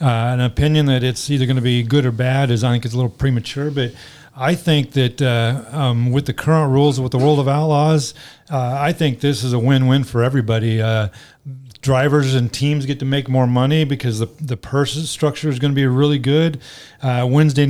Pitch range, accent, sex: 125-145 Hz, American, male